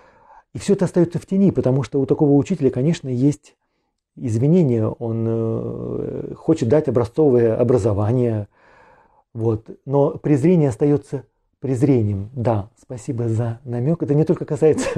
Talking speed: 125 wpm